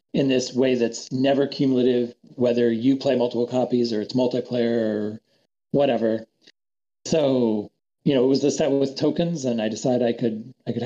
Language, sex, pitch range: English, male, 120-150 Hz